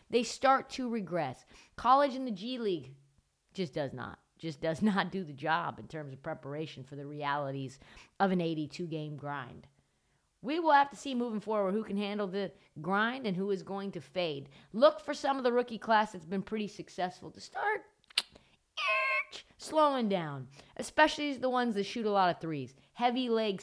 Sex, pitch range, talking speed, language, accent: female, 165-255 Hz, 185 wpm, English, American